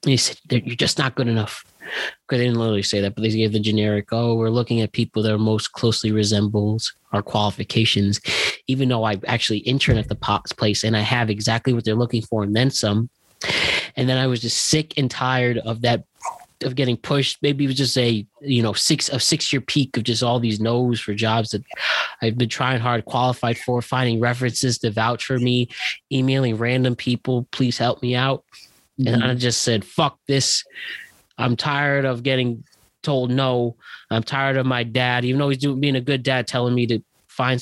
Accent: American